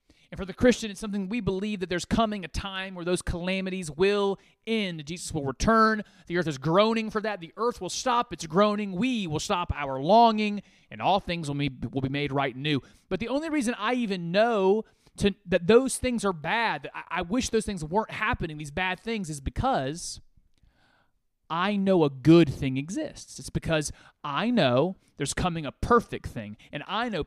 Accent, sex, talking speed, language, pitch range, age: American, male, 205 wpm, English, 140-210 Hz, 30-49